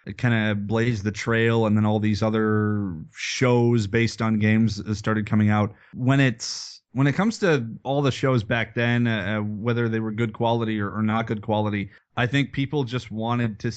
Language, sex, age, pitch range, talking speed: English, male, 30-49, 110-125 Hz, 200 wpm